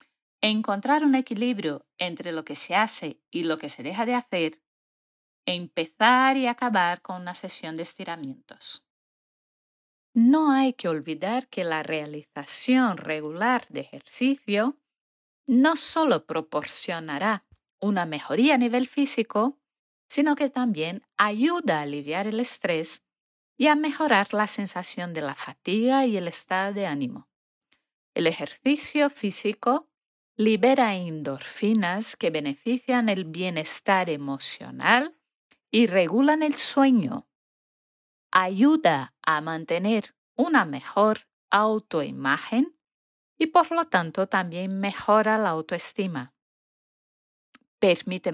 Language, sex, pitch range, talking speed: Spanish, female, 170-255 Hz, 115 wpm